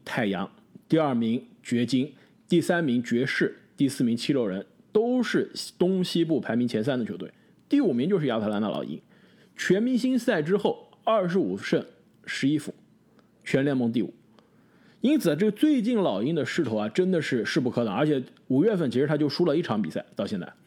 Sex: male